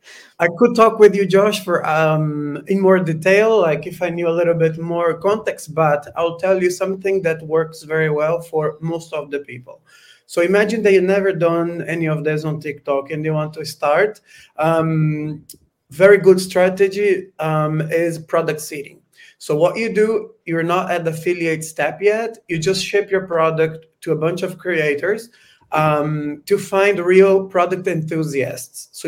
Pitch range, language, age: 155-185 Hz, English, 30-49